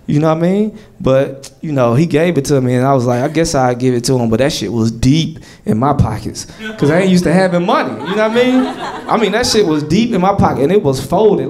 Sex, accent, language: male, American, English